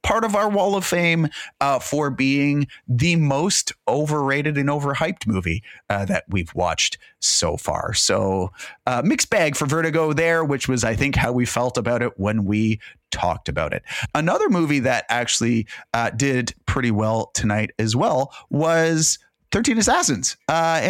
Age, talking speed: 30-49, 165 wpm